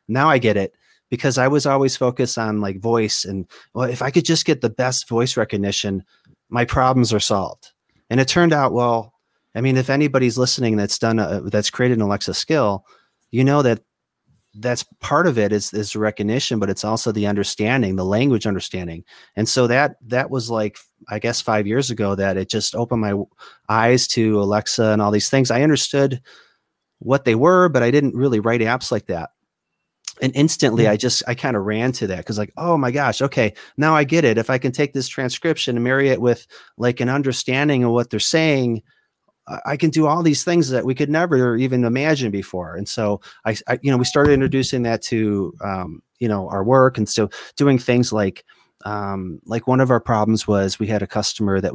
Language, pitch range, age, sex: English, 105-130 Hz, 30-49, male